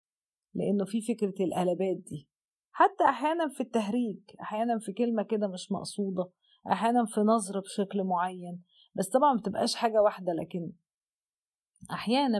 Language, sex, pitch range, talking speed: Arabic, female, 190-245 Hz, 135 wpm